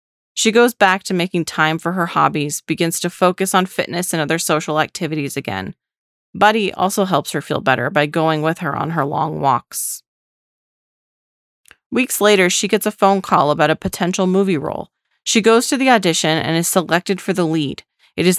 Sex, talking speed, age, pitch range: female, 190 wpm, 30-49, 155-195 Hz